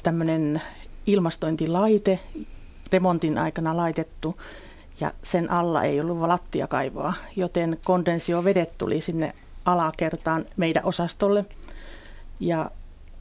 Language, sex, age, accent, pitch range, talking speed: Finnish, female, 40-59, native, 155-180 Hz, 85 wpm